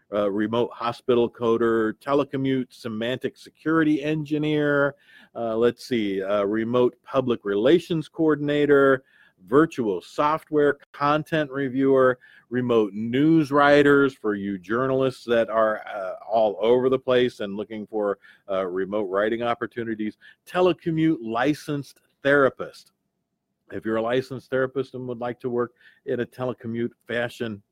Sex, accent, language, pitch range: male, American, English, 110-145 Hz